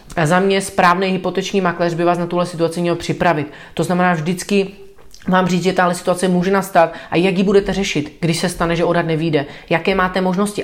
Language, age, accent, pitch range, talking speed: Czech, 30-49, native, 160-185 Hz, 210 wpm